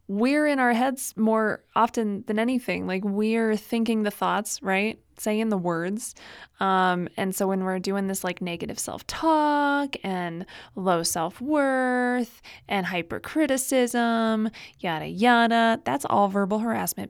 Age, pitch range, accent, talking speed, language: 20-39, 190-235 Hz, American, 135 wpm, English